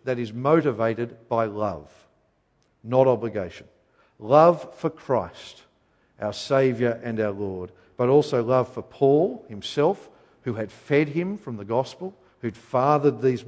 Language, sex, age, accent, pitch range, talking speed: English, male, 50-69, Australian, 115-160 Hz, 140 wpm